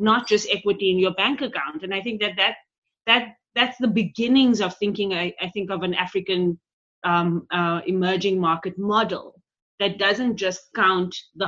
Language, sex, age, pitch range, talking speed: English, female, 20-39, 175-205 Hz, 180 wpm